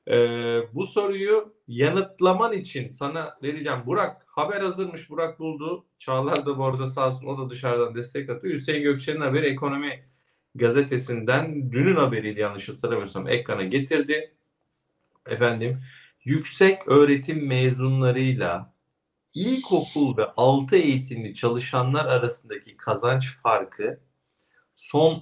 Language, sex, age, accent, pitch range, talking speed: Turkish, male, 50-69, native, 125-155 Hz, 110 wpm